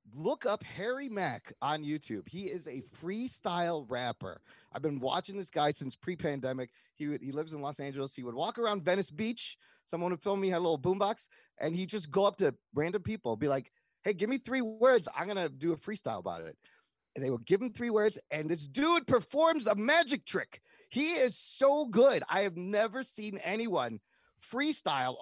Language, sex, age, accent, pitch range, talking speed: English, male, 30-49, American, 155-225 Hz, 200 wpm